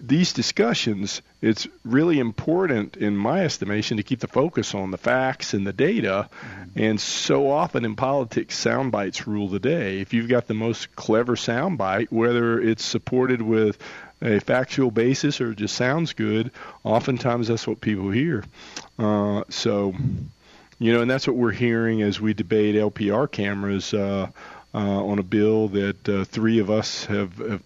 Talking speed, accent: 170 wpm, American